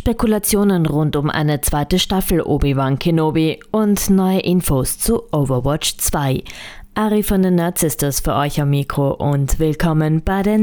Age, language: 20-39, German